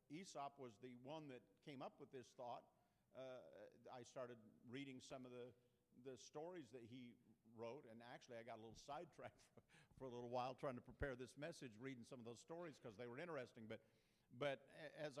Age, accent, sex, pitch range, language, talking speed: 50-69, American, male, 125-155 Hz, English, 205 wpm